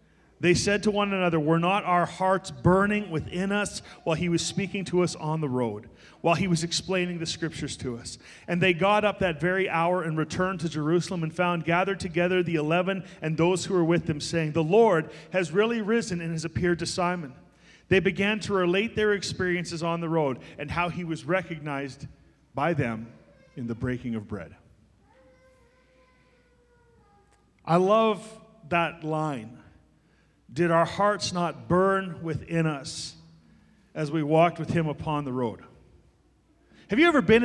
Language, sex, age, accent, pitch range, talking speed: English, male, 40-59, American, 160-195 Hz, 170 wpm